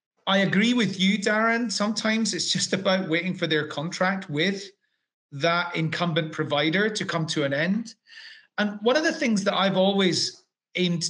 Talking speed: 170 wpm